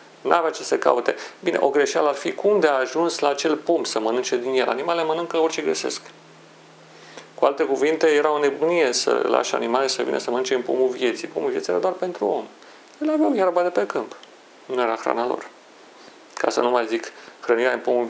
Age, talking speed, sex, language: 40-59, 210 wpm, male, Romanian